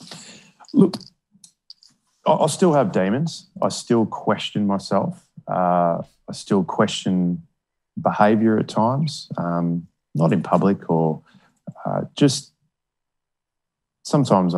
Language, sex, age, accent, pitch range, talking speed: English, male, 20-39, Australian, 85-105 Hz, 105 wpm